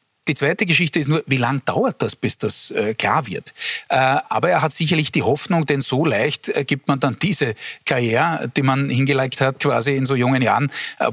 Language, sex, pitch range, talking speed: German, male, 115-145 Hz, 215 wpm